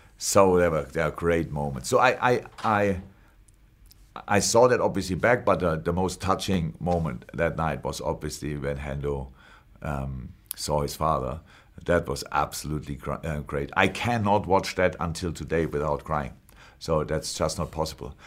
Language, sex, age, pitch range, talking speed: English, male, 50-69, 90-120 Hz, 160 wpm